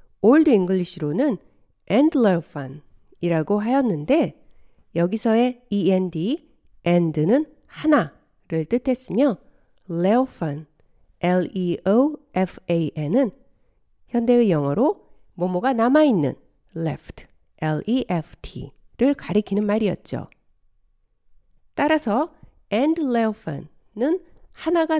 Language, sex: Korean, female